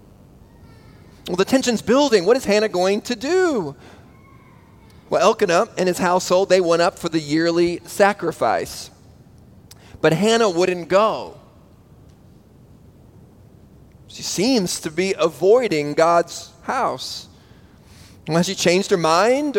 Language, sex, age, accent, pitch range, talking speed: English, male, 30-49, American, 150-190 Hz, 115 wpm